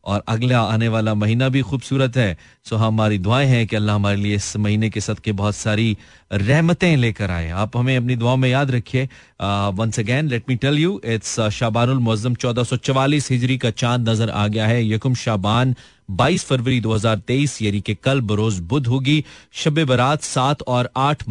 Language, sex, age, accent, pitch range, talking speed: Hindi, male, 30-49, native, 105-130 Hz, 170 wpm